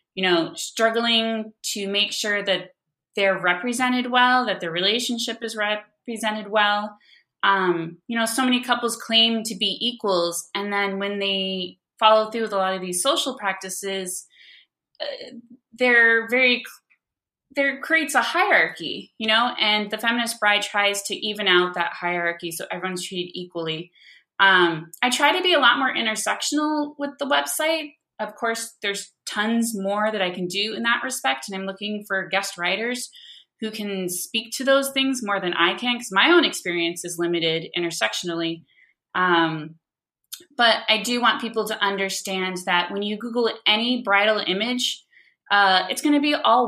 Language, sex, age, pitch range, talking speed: English, female, 20-39, 185-240 Hz, 165 wpm